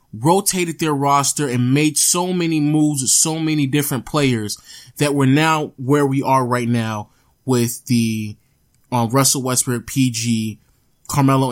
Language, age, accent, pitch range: English, 20-39, American, 125-175 Hz